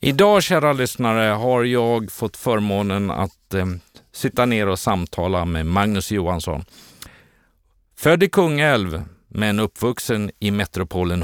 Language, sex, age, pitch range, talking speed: Swedish, male, 50-69, 95-115 Hz, 125 wpm